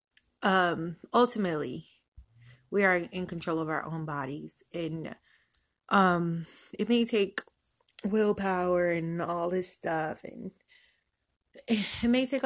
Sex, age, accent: female, 20-39, American